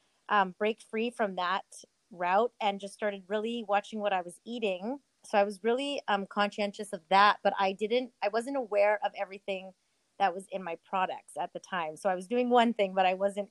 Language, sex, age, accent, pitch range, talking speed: English, female, 30-49, American, 185-210 Hz, 215 wpm